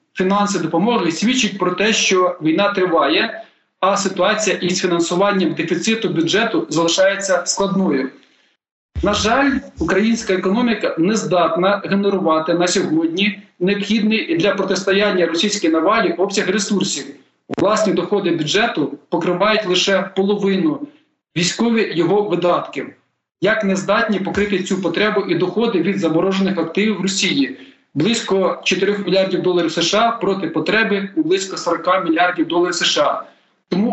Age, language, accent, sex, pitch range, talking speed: 40-59, Ukrainian, native, male, 180-220 Hz, 120 wpm